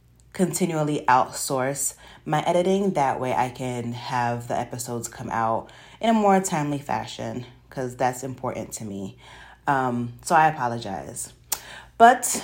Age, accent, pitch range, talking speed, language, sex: 30-49, American, 130-160 Hz, 135 wpm, English, female